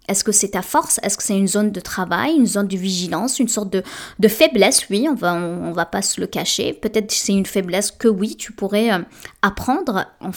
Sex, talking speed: female, 250 wpm